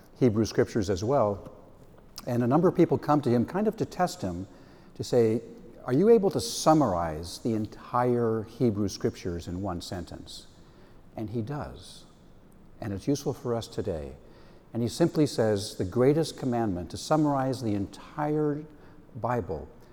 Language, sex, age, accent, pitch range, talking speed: English, male, 60-79, American, 100-125 Hz, 155 wpm